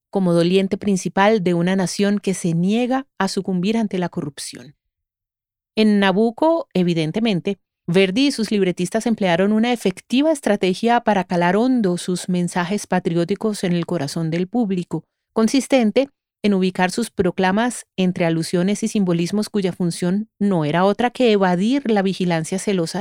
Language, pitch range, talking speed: Spanish, 175-220 Hz, 145 wpm